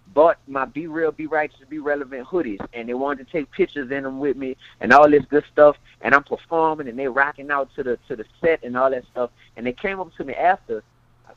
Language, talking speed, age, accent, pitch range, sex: English, 255 wpm, 30-49, American, 125-160 Hz, male